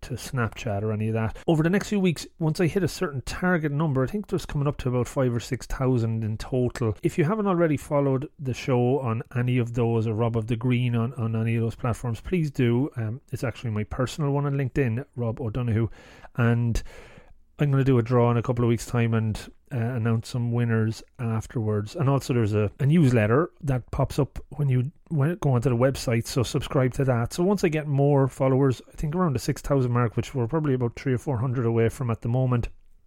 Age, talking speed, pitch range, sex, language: 30-49, 240 wpm, 115-135 Hz, male, English